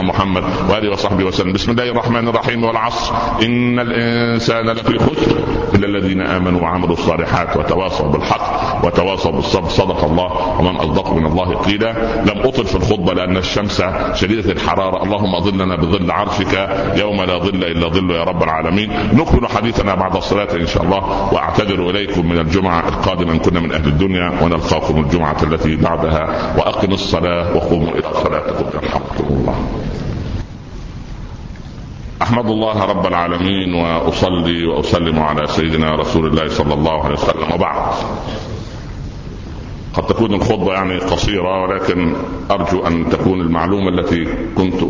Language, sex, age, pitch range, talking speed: Arabic, male, 60-79, 85-100 Hz, 140 wpm